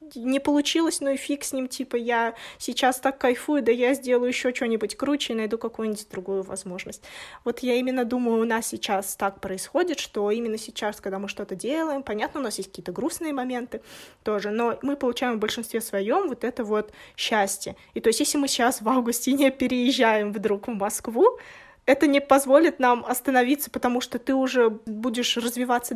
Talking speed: 185 wpm